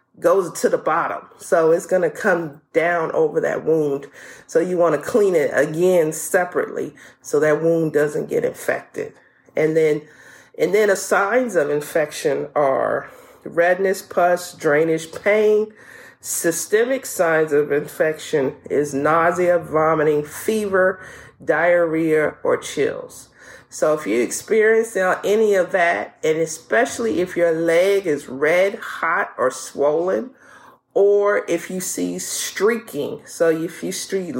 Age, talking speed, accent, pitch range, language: 40-59, 130 wpm, American, 155-215 Hz, English